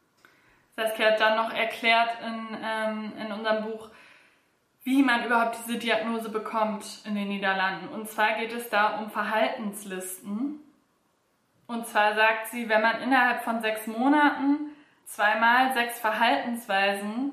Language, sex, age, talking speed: German, female, 20-39, 130 wpm